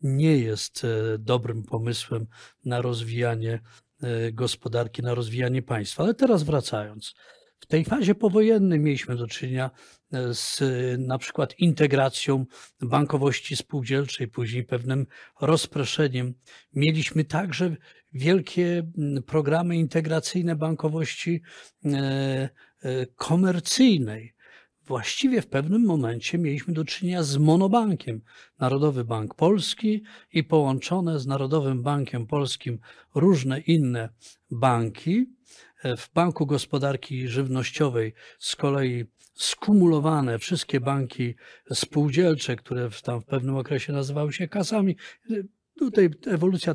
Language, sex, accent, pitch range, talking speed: Polish, male, native, 125-165 Hz, 100 wpm